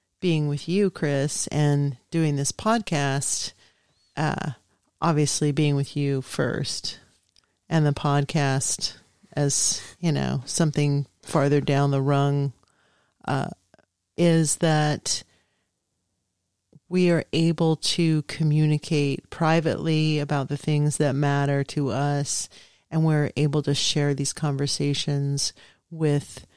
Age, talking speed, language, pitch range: 40-59, 110 wpm, English, 140-165 Hz